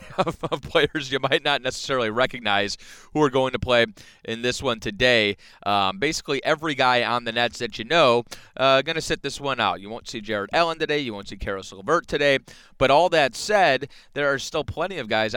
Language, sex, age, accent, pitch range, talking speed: English, male, 30-49, American, 110-145 Hz, 225 wpm